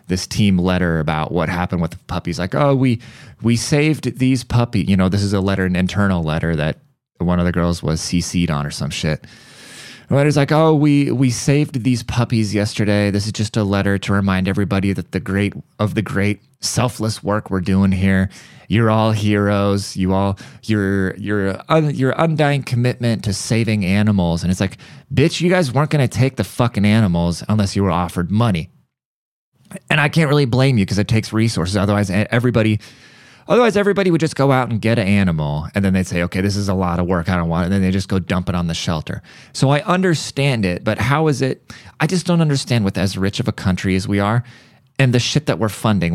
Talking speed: 220 wpm